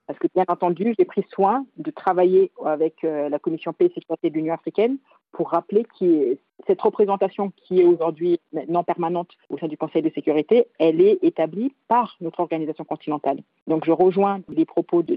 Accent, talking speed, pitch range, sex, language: French, 185 wpm, 165-235 Hz, female, French